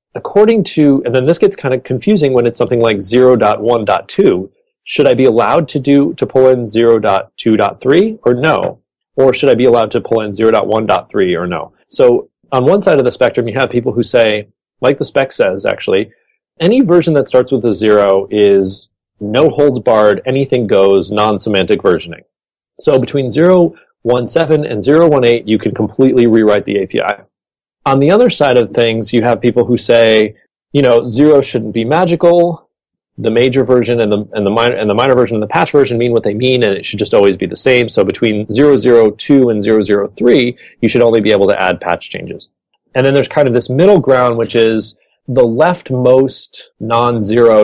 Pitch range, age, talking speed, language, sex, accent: 110-135 Hz, 30-49, 195 wpm, English, male, American